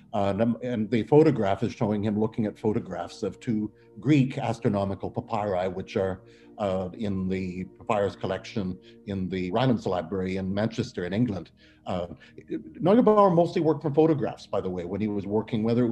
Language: English